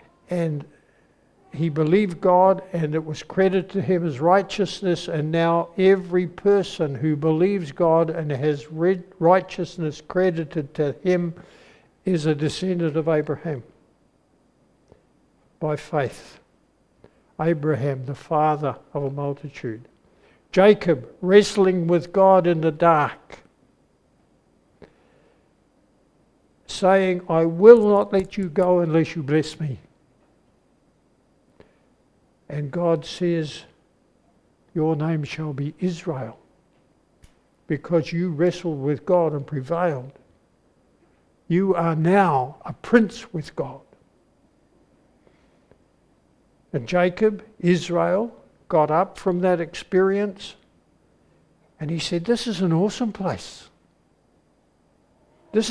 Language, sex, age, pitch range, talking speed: English, male, 60-79, 155-190 Hz, 100 wpm